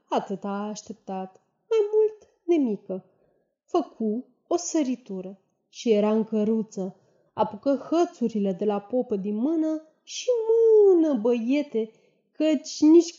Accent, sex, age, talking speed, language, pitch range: native, female, 20-39, 115 wpm, Romanian, 210-290 Hz